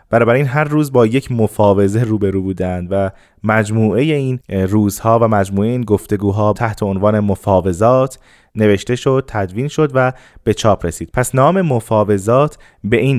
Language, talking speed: Persian, 150 wpm